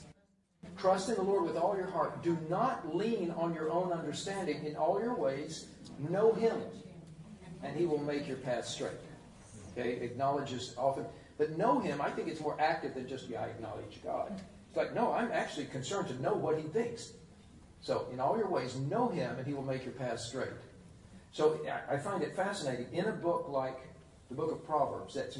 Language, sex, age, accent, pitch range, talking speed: English, male, 50-69, American, 120-160 Hz, 200 wpm